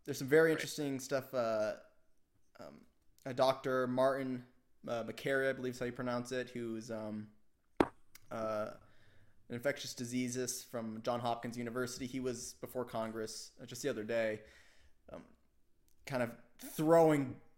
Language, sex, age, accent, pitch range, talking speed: English, male, 20-39, American, 110-140 Hz, 140 wpm